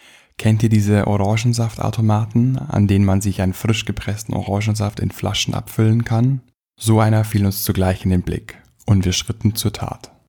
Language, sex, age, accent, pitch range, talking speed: German, male, 10-29, German, 100-115 Hz, 170 wpm